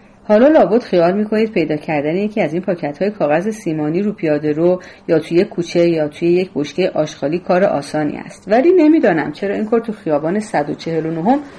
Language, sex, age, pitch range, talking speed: Persian, female, 40-59, 165-240 Hz, 170 wpm